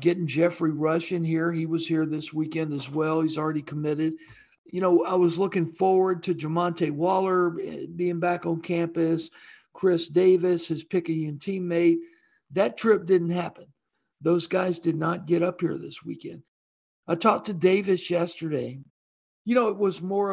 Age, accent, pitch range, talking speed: 50-69, American, 165-195 Hz, 165 wpm